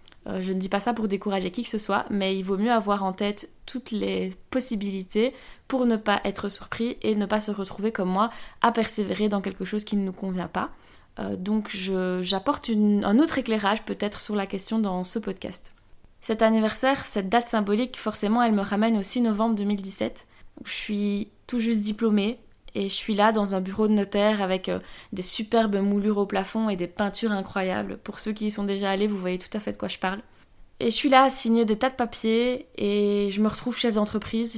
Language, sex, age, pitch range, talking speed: French, female, 20-39, 195-225 Hz, 220 wpm